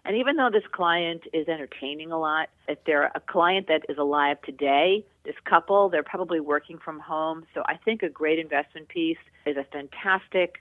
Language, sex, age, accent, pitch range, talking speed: English, female, 40-59, American, 145-190 Hz, 190 wpm